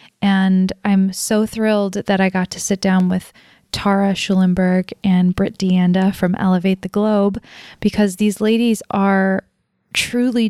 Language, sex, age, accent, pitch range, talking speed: English, female, 20-39, American, 185-205 Hz, 145 wpm